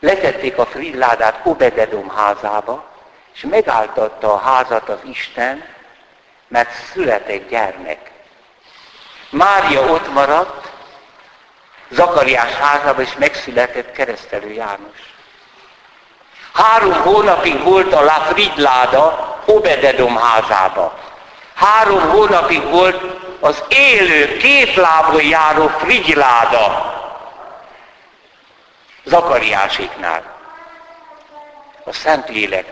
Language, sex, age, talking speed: Hungarian, male, 60-79, 75 wpm